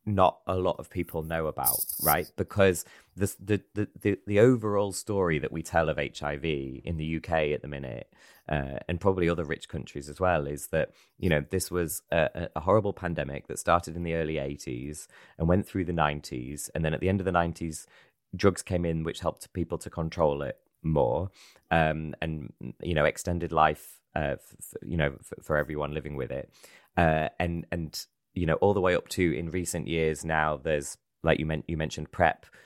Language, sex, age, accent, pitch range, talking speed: English, male, 20-39, British, 75-90 Hz, 200 wpm